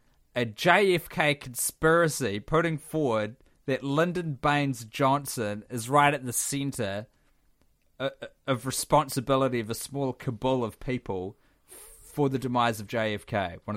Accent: Australian